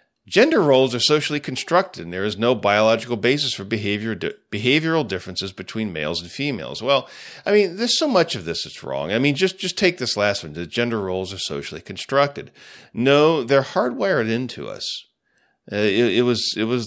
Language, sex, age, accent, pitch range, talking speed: English, male, 40-59, American, 105-145 Hz, 195 wpm